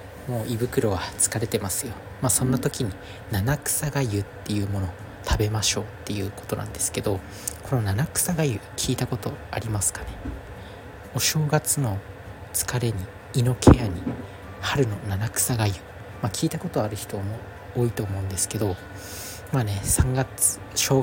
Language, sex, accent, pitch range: Japanese, male, native, 100-130 Hz